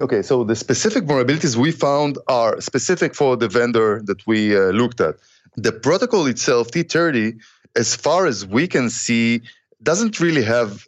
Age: 30-49